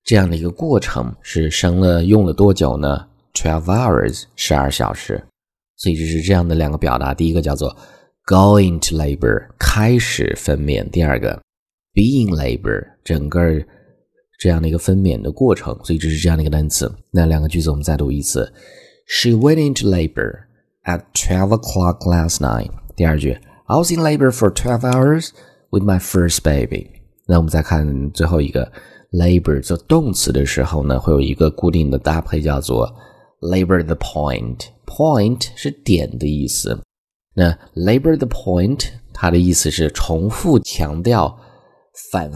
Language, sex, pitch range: Chinese, male, 75-105 Hz